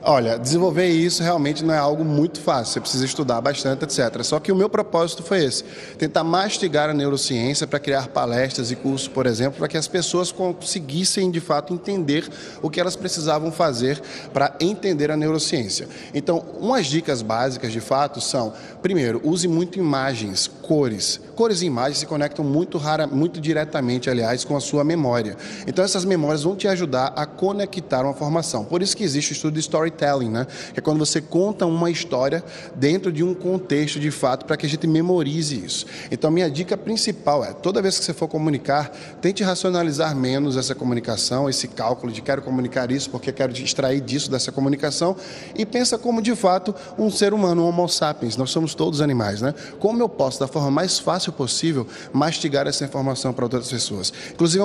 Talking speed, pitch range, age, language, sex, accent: 190 wpm, 135-175 Hz, 20-39, Portuguese, male, Brazilian